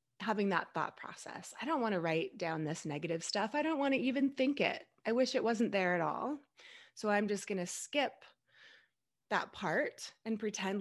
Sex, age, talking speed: female, 20-39, 205 wpm